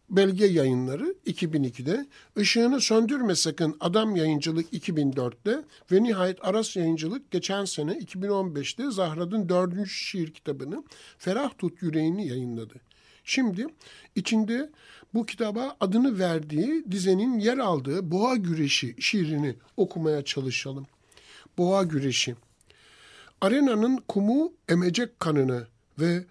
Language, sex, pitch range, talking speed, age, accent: Turkish, male, 145-205 Hz, 105 wpm, 60-79, native